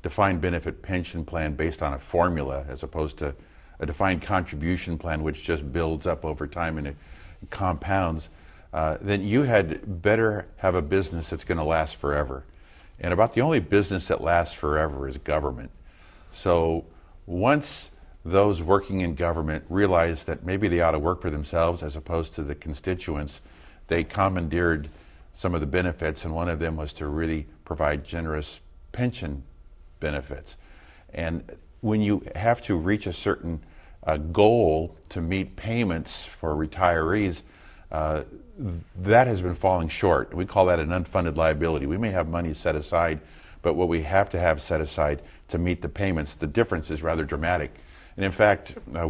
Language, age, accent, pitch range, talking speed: English, 50-69, American, 75-90 Hz, 170 wpm